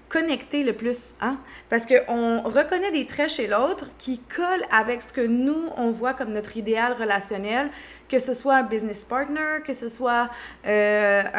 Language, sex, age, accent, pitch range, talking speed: French, female, 20-39, Canadian, 210-270 Hz, 175 wpm